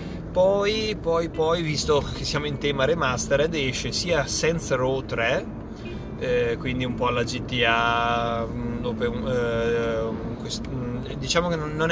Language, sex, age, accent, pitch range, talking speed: Italian, male, 30-49, native, 115-150 Hz, 115 wpm